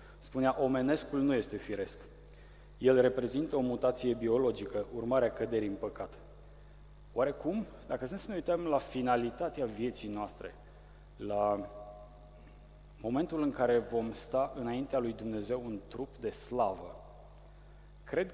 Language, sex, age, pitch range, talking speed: Romanian, male, 30-49, 115-150 Hz, 120 wpm